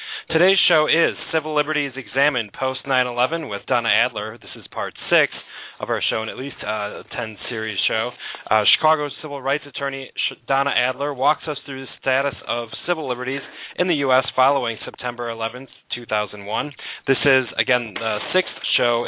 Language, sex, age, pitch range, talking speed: English, male, 30-49, 120-155 Hz, 165 wpm